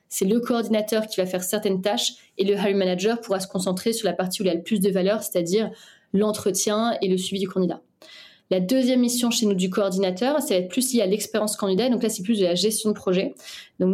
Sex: female